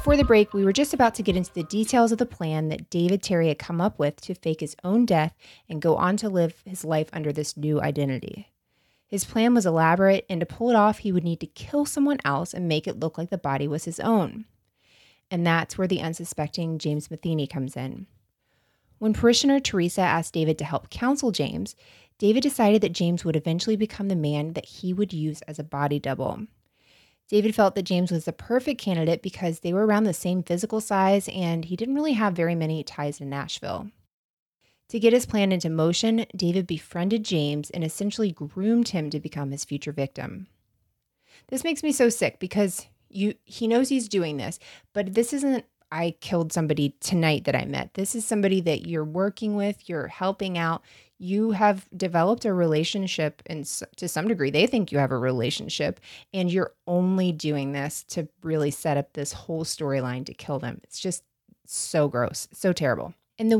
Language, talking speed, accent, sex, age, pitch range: English, 200 wpm, American, female, 20-39, 155-210 Hz